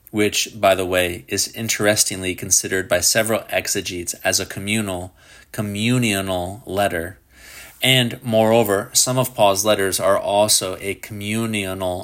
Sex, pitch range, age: male, 95-115 Hz, 30-49